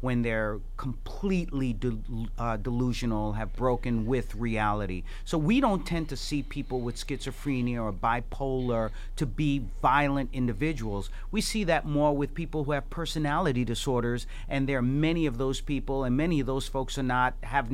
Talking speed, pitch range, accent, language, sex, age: 170 wpm, 120-170 Hz, American, English, male, 40-59